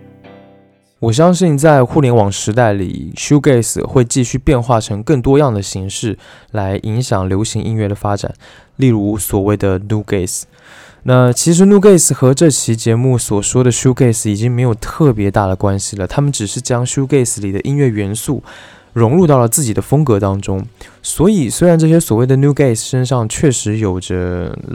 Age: 20-39